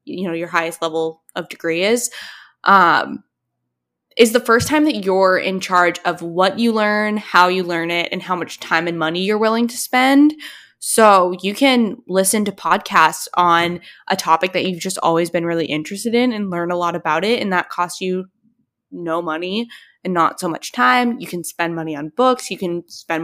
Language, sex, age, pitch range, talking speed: English, female, 10-29, 175-225 Hz, 200 wpm